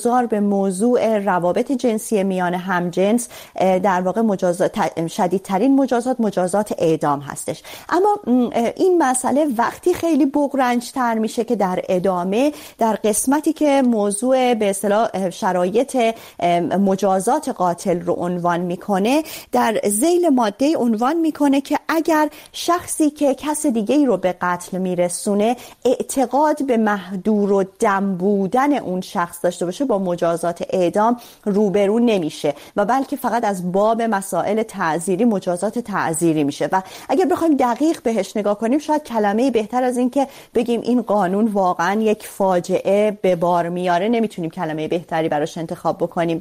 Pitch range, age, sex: 185-250 Hz, 30-49, female